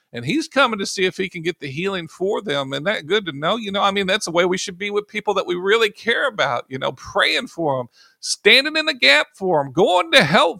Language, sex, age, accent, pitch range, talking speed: English, male, 50-69, American, 145-200 Hz, 275 wpm